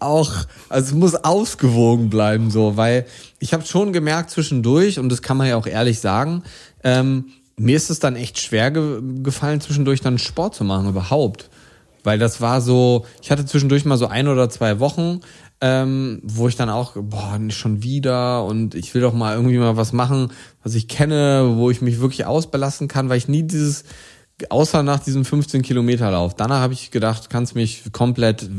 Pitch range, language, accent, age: 115-145 Hz, German, German, 20-39